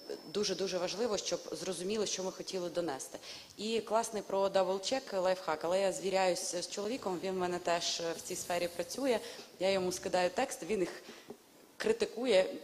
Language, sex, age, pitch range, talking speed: Ukrainian, female, 20-39, 175-205 Hz, 155 wpm